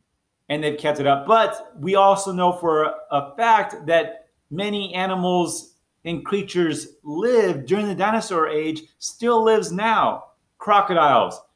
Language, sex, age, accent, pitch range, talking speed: English, male, 30-49, American, 150-195 Hz, 135 wpm